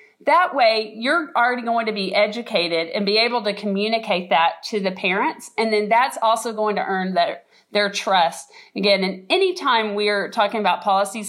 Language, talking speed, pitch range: English, 180 wpm, 200-250 Hz